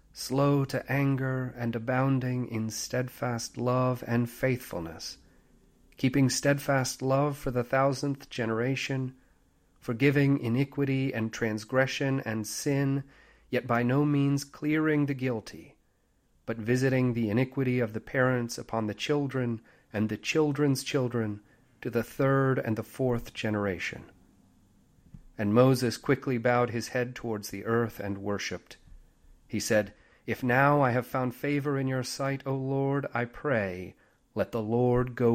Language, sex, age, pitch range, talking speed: English, male, 40-59, 115-135 Hz, 140 wpm